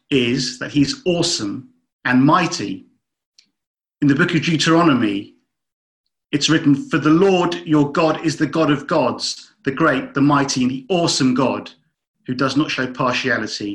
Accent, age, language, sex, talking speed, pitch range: British, 40-59, English, male, 155 wpm, 135-170 Hz